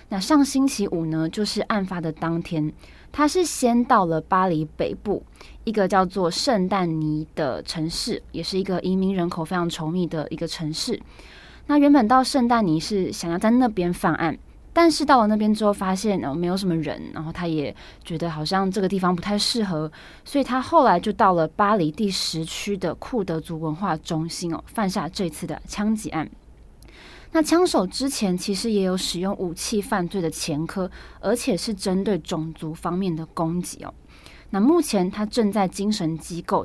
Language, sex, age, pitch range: Chinese, female, 20-39, 165-220 Hz